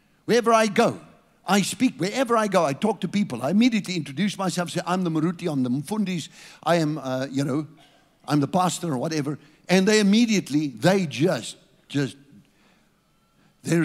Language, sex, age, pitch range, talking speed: English, male, 60-79, 160-225 Hz, 175 wpm